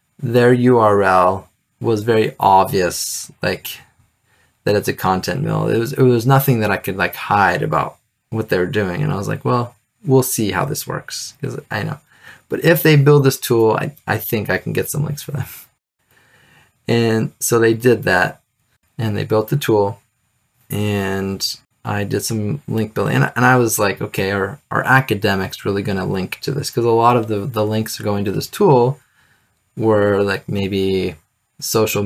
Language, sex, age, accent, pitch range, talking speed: English, male, 20-39, American, 100-135 Hz, 195 wpm